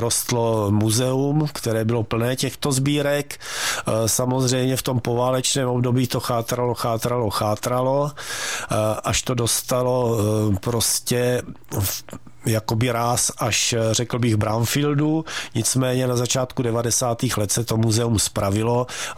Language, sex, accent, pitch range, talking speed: Czech, male, native, 115-135 Hz, 110 wpm